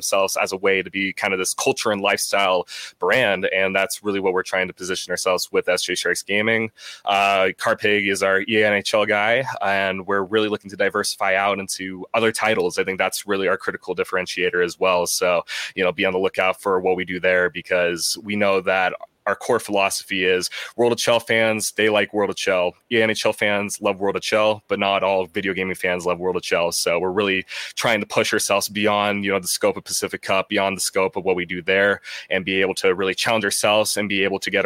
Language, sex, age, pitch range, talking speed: English, male, 20-39, 95-105 Hz, 230 wpm